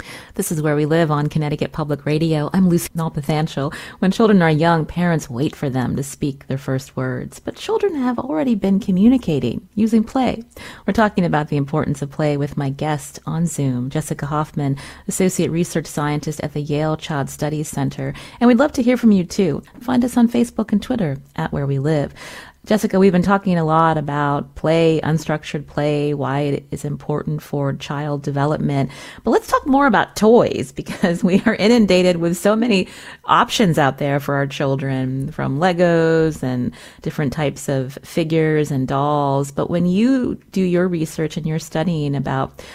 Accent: American